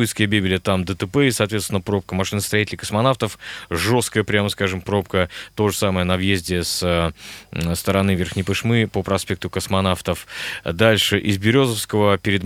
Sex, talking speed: male, 135 wpm